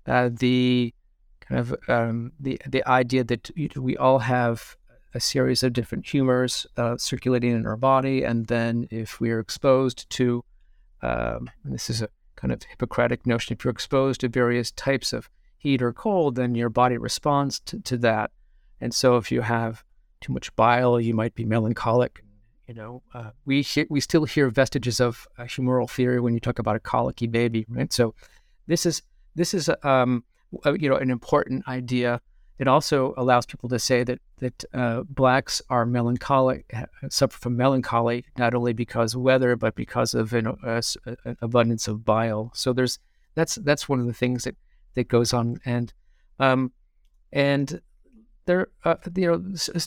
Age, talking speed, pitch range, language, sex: 50-69, 175 wpm, 120-135 Hz, English, male